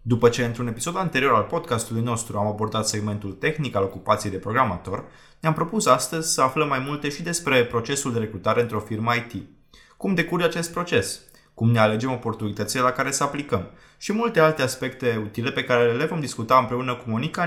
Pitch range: 110-135 Hz